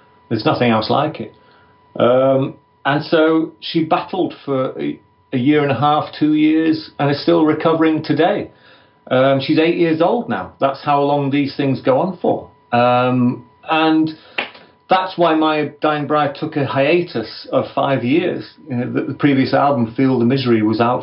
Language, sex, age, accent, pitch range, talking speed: English, male, 40-59, British, 120-155 Hz, 170 wpm